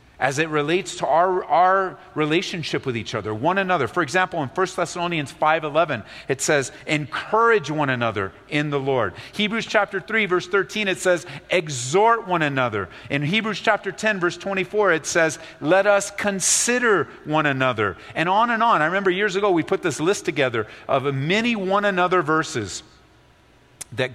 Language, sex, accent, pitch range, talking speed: English, male, American, 150-200 Hz, 175 wpm